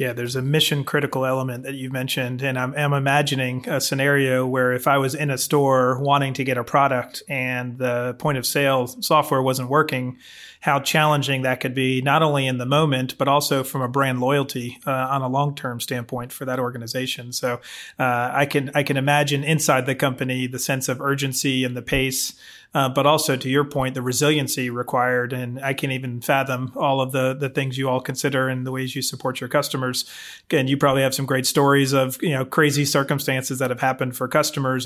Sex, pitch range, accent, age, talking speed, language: male, 130-145 Hz, American, 30-49, 210 wpm, English